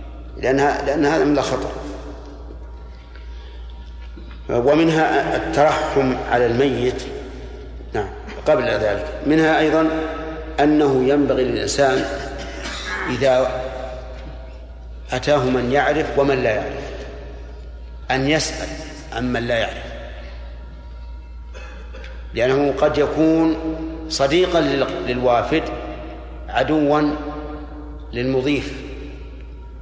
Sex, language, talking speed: male, Arabic, 70 wpm